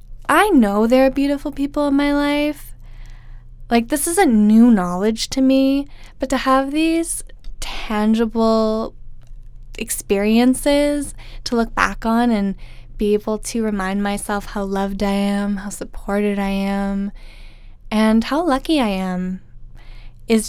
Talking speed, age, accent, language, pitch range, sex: 140 wpm, 10-29, American, English, 195-270 Hz, female